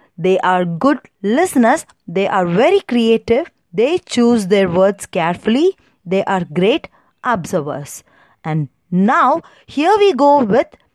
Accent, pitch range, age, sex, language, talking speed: native, 190-295 Hz, 20-39, female, Tamil, 125 wpm